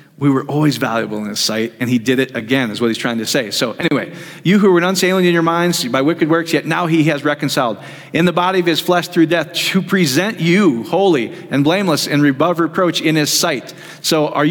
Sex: male